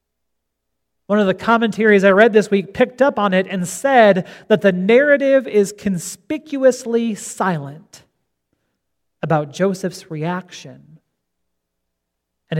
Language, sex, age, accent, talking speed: English, male, 40-59, American, 115 wpm